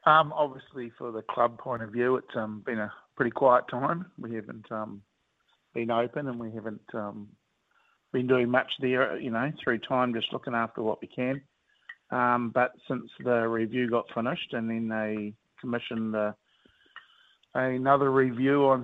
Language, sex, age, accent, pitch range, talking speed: English, male, 50-69, Australian, 110-130 Hz, 165 wpm